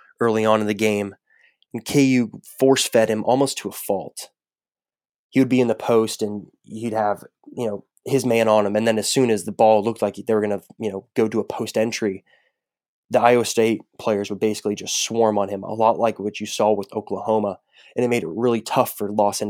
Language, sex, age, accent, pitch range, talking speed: English, male, 20-39, American, 105-115 Hz, 225 wpm